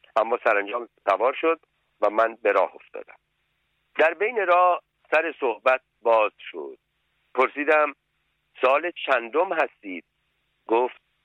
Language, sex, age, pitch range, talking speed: Persian, male, 50-69, 110-150 Hz, 110 wpm